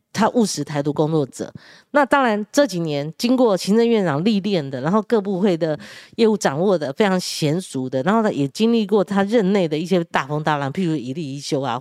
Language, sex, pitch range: Chinese, female, 155-250 Hz